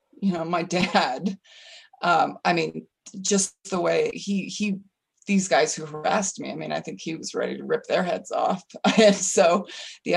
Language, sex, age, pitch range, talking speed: English, female, 30-49, 180-210 Hz, 190 wpm